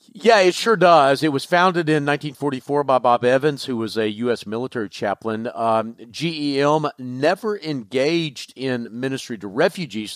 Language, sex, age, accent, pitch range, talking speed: English, male, 50-69, American, 105-140 Hz, 155 wpm